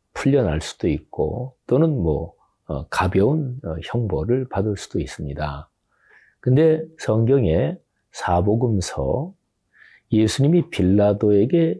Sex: male